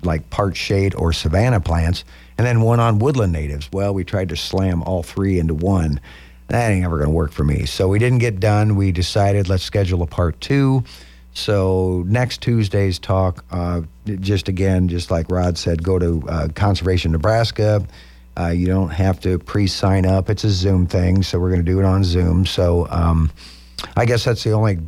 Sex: male